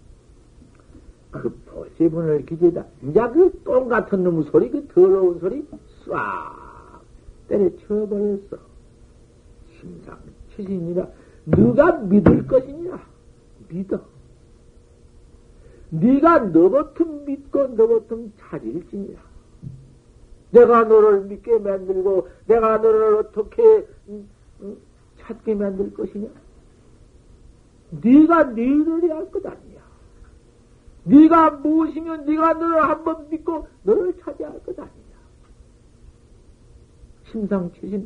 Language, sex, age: Korean, male, 60-79